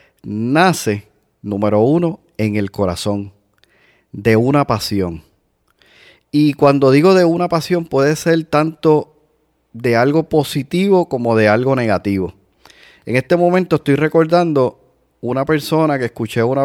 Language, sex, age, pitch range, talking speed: Spanish, male, 30-49, 110-150 Hz, 125 wpm